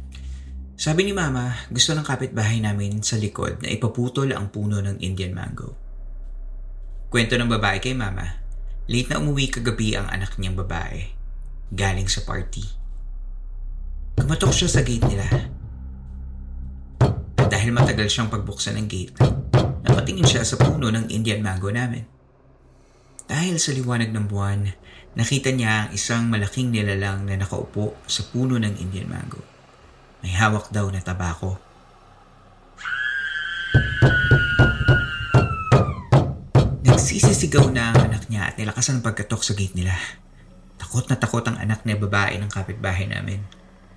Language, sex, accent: Filipino, male, native